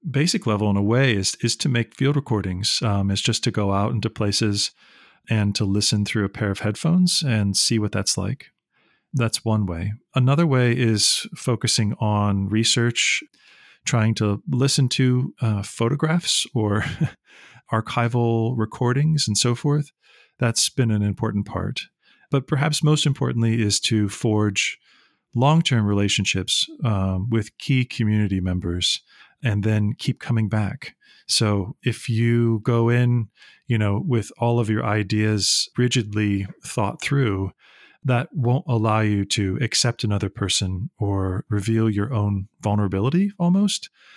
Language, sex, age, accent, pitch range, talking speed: English, male, 40-59, American, 105-125 Hz, 145 wpm